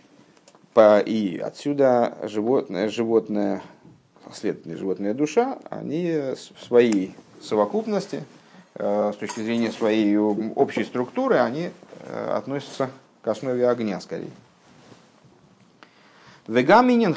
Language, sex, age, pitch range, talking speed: Russian, male, 50-69, 110-175 Hz, 80 wpm